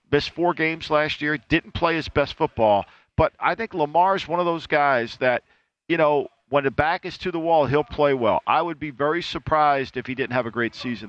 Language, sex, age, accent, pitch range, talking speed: English, male, 50-69, American, 125-155 Hz, 235 wpm